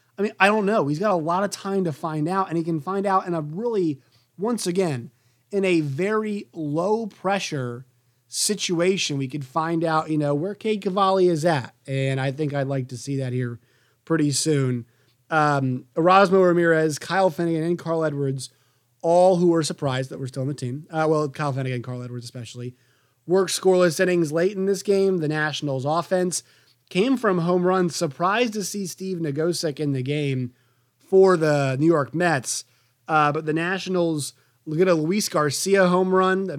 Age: 30-49